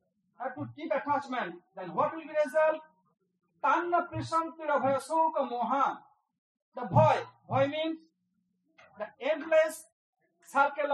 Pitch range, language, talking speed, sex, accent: 235-305 Hz, English, 120 wpm, male, Indian